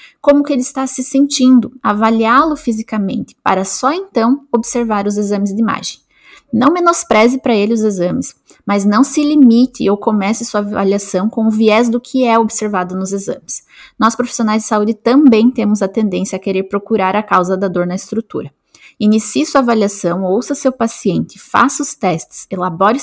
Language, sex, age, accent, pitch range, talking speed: Portuguese, female, 20-39, Brazilian, 200-250 Hz, 170 wpm